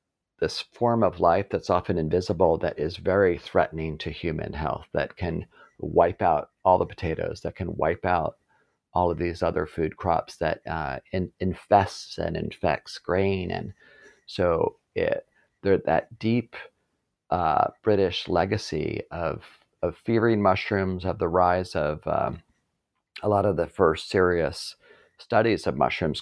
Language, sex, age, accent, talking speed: English, male, 40-59, American, 145 wpm